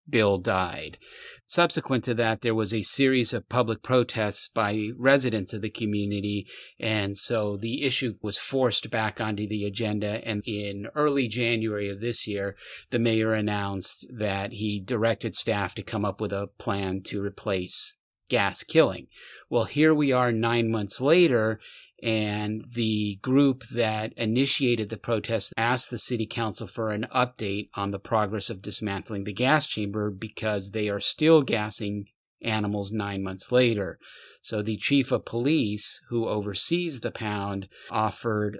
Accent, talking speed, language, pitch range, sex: American, 155 wpm, English, 105-125 Hz, male